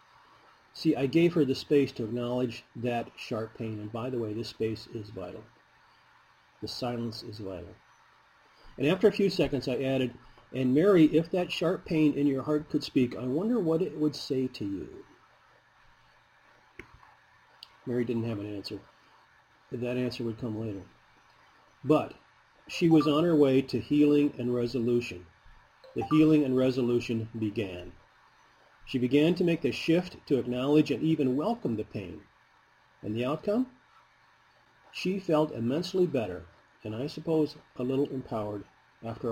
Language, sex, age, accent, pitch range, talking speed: English, male, 40-59, American, 115-155 Hz, 155 wpm